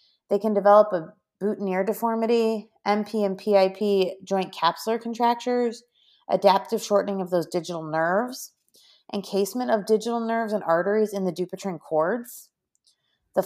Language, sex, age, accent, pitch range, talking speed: English, female, 30-49, American, 180-230 Hz, 130 wpm